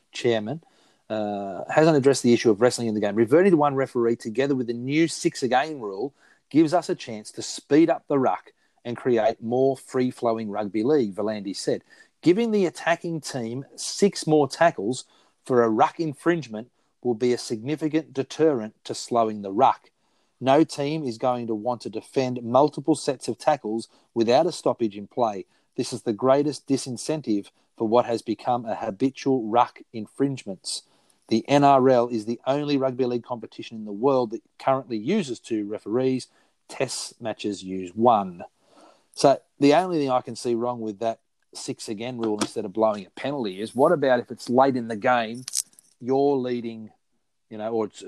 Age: 40-59